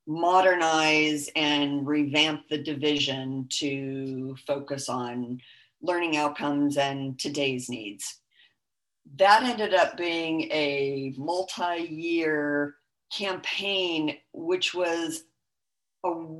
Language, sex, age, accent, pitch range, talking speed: English, female, 50-69, American, 145-180 Hz, 90 wpm